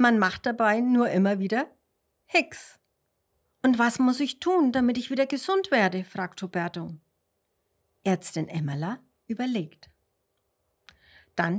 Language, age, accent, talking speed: German, 60-79, German, 120 wpm